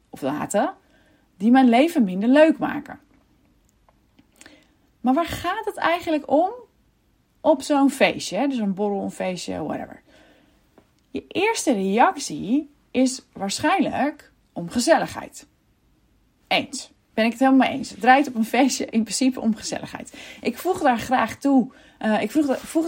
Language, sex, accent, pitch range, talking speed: Dutch, female, Dutch, 195-280 Hz, 135 wpm